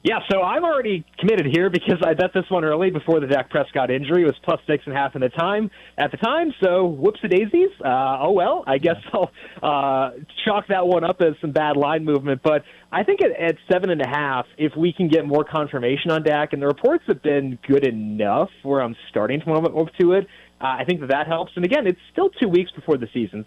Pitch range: 135-175 Hz